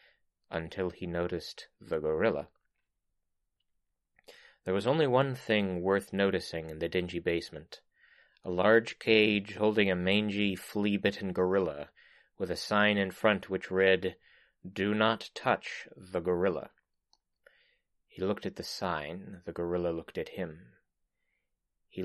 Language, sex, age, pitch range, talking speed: English, male, 30-49, 90-110 Hz, 130 wpm